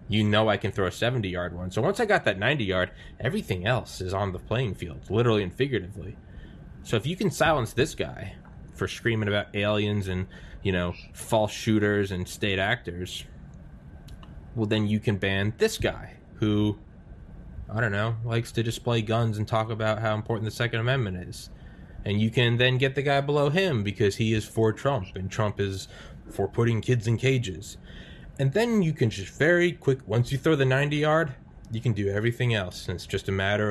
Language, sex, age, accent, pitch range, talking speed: English, male, 20-39, American, 95-115 Hz, 200 wpm